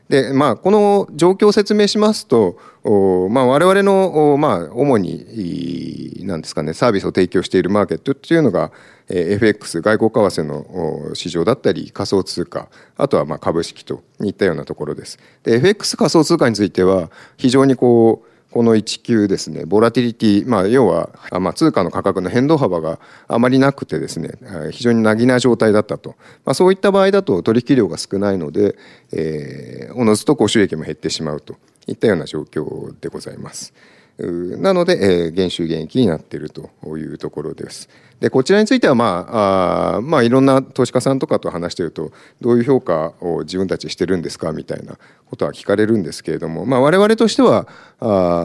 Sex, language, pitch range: male, Japanese, 95-150 Hz